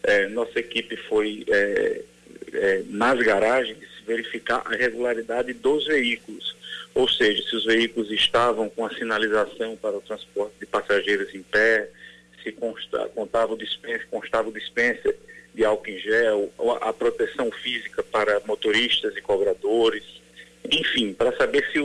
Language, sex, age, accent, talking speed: Portuguese, male, 40-59, Brazilian, 145 wpm